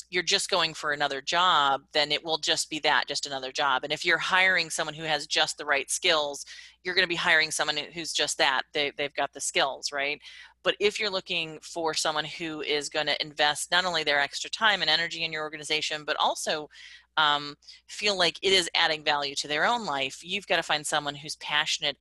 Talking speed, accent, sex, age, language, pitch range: 215 wpm, American, female, 30-49, English, 145-175 Hz